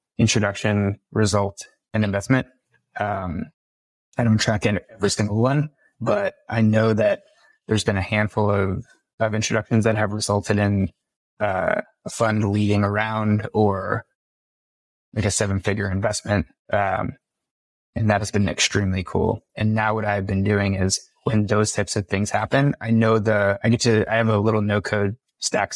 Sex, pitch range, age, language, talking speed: male, 100-115 Hz, 20-39, English, 165 wpm